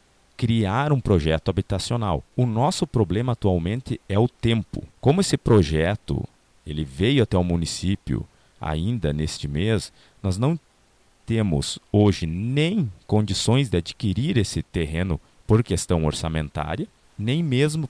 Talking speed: 120 wpm